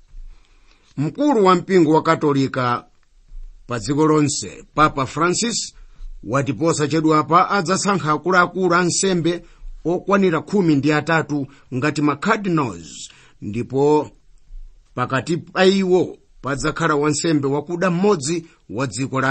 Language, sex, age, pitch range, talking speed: English, male, 50-69, 140-175 Hz, 85 wpm